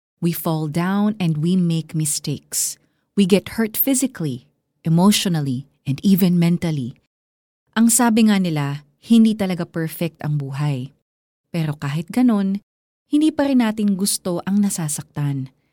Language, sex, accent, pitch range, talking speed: Filipino, female, native, 155-205 Hz, 130 wpm